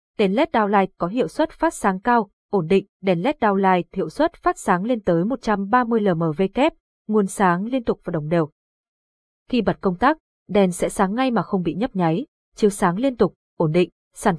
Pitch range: 175-230 Hz